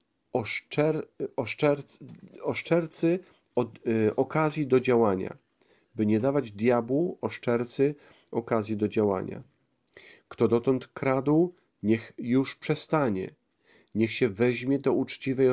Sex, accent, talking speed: male, native, 90 wpm